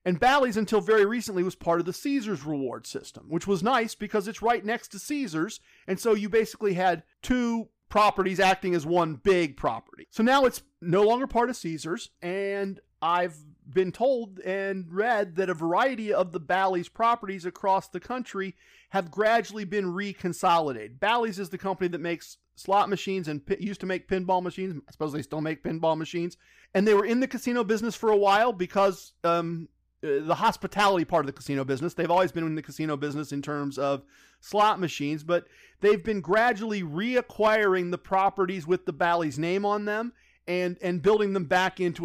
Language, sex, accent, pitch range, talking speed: English, male, American, 170-215 Hz, 190 wpm